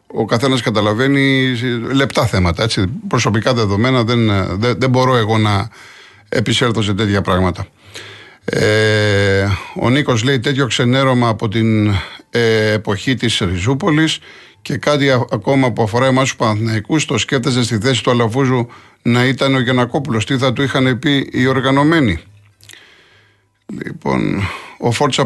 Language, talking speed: Greek, 135 wpm